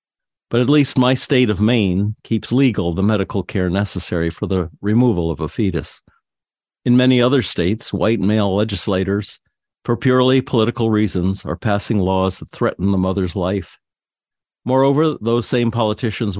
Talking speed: 155 wpm